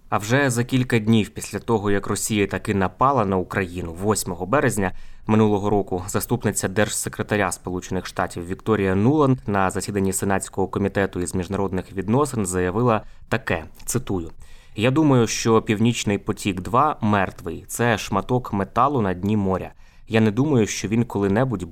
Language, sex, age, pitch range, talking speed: Ukrainian, male, 20-39, 95-115 Hz, 145 wpm